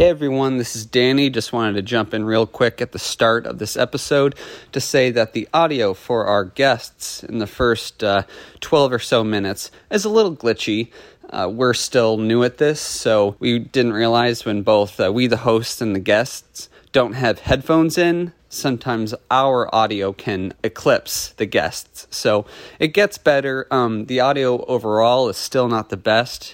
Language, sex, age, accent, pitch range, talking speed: English, male, 30-49, American, 110-135 Hz, 185 wpm